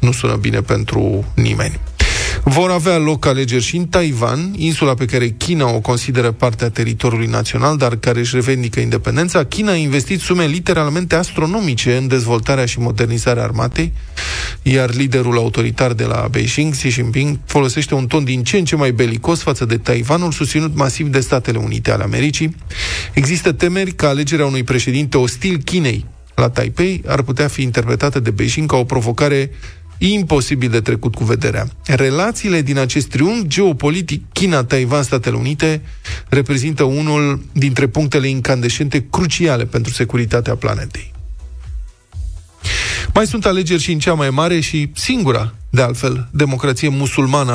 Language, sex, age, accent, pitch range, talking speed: Romanian, male, 20-39, native, 120-150 Hz, 150 wpm